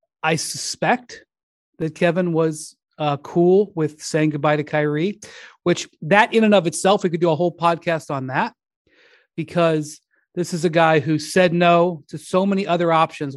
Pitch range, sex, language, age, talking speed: 160-210 Hz, male, English, 30-49, 175 wpm